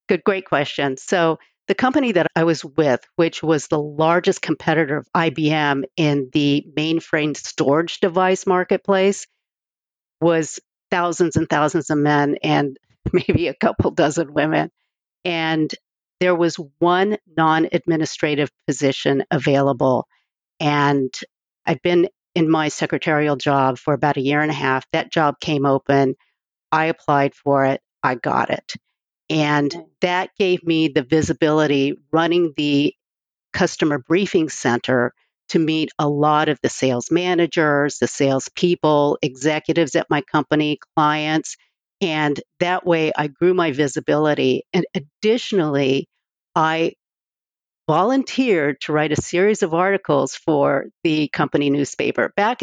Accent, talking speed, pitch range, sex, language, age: American, 130 wpm, 145-175 Hz, female, English, 50-69